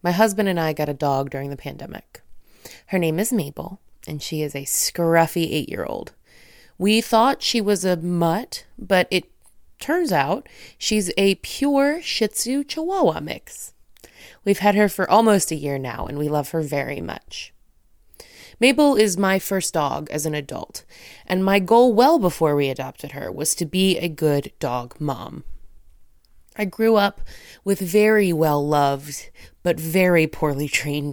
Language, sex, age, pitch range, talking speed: English, female, 20-39, 150-205 Hz, 160 wpm